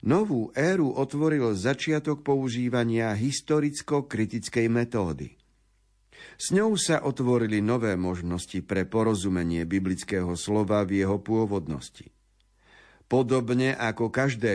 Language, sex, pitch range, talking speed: Slovak, male, 100-135 Hz, 95 wpm